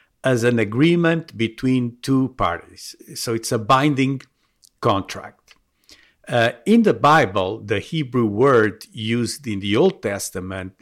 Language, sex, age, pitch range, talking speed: English, male, 50-69, 110-140 Hz, 130 wpm